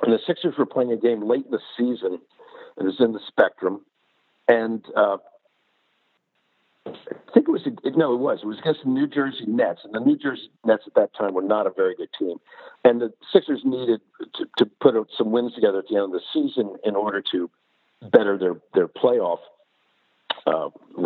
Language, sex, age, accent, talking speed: English, male, 50-69, American, 200 wpm